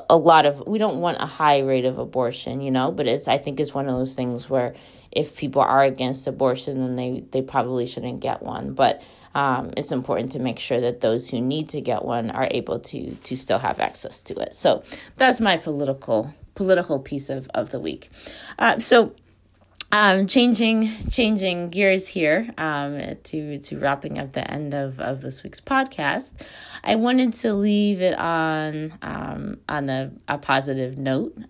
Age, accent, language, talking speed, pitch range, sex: 20-39, American, English, 190 wpm, 130-160 Hz, female